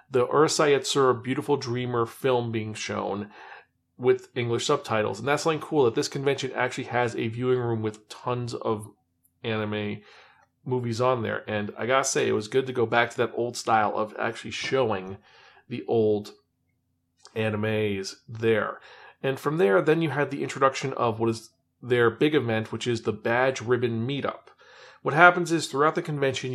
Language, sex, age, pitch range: English, male, 40-59, 110-140 Hz